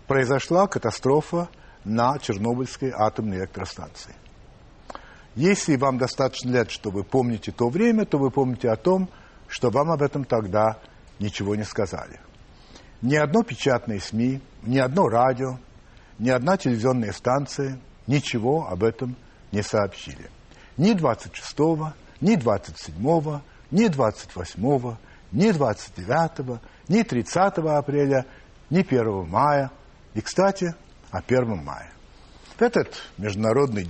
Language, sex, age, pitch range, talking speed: Russian, male, 60-79, 110-165 Hz, 120 wpm